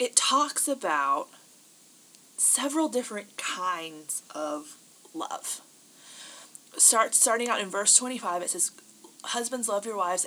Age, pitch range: 20-39, 185-250 Hz